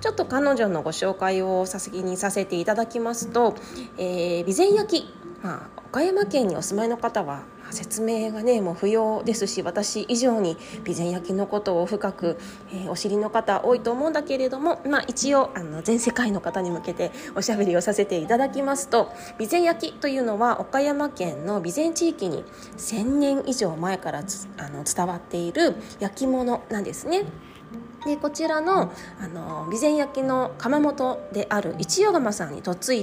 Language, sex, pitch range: Japanese, female, 195-280 Hz